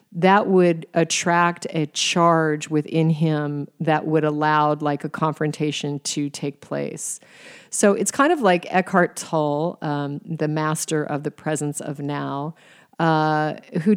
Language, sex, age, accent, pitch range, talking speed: English, female, 40-59, American, 150-175 Hz, 140 wpm